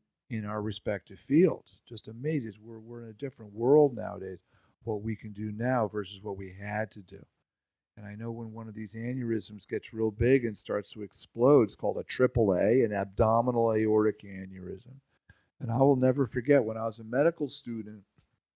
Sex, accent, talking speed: male, American, 190 wpm